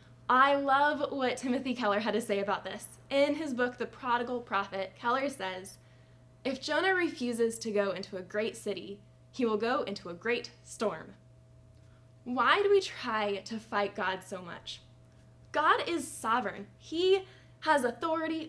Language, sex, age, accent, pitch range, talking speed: English, female, 10-29, American, 200-270 Hz, 160 wpm